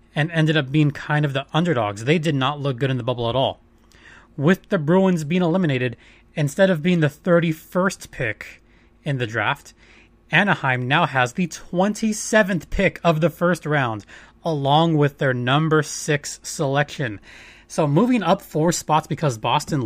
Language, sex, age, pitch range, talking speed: English, male, 30-49, 130-180 Hz, 165 wpm